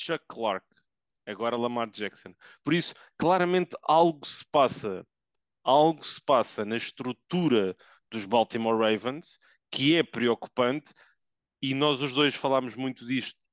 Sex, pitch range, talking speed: male, 115-155 Hz, 130 wpm